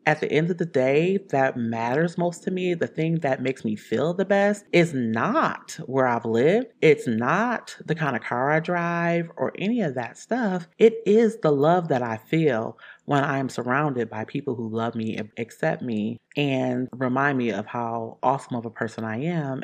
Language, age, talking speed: English, 30-49, 200 wpm